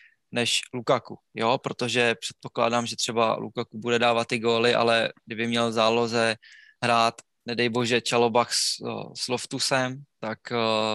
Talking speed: 135 wpm